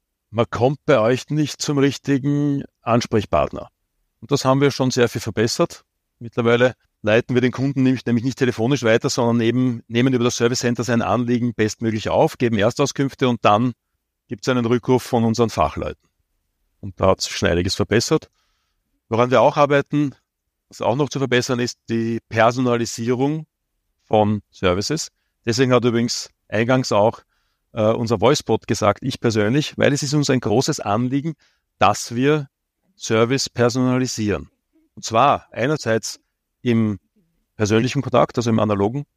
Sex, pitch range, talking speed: male, 110-130 Hz, 150 wpm